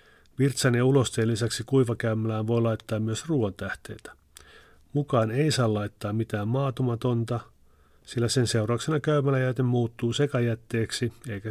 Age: 40-59